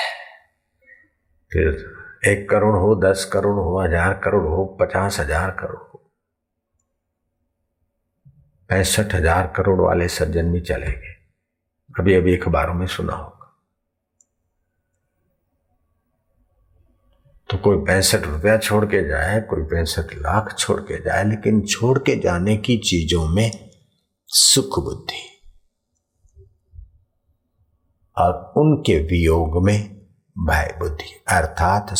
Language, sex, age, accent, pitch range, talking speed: Hindi, male, 50-69, native, 80-105 Hz, 105 wpm